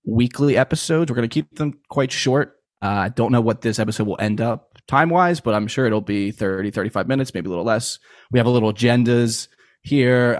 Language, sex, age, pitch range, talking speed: English, male, 20-39, 105-125 Hz, 215 wpm